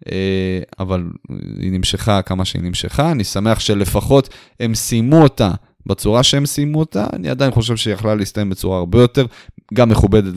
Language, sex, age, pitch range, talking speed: Hebrew, male, 20-39, 95-115 Hz, 160 wpm